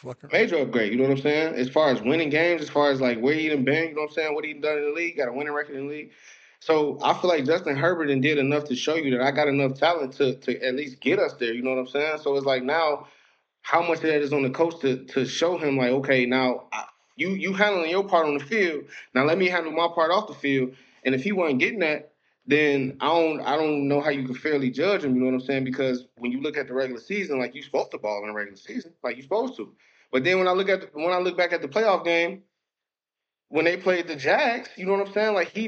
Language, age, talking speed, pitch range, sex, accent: English, 20-39, 295 wpm, 130-170 Hz, male, American